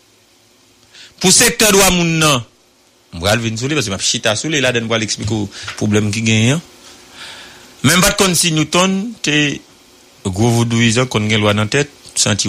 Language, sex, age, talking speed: English, male, 60-79, 160 wpm